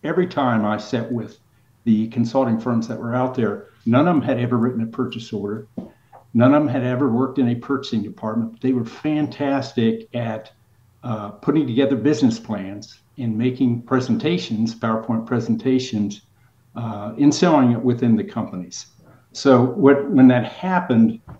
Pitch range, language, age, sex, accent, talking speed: 110-130 Hz, English, 60-79, male, American, 160 wpm